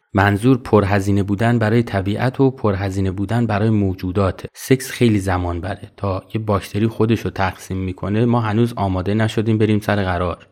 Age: 30-49